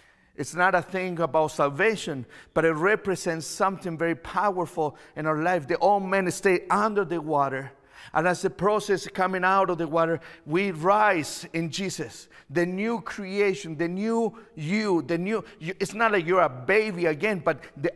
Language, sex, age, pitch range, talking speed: English, male, 50-69, 160-200 Hz, 175 wpm